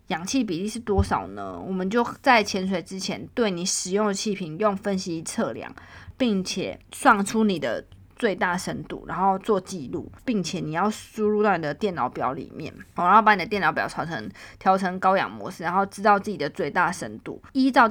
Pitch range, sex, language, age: 180-225 Hz, female, Chinese, 20-39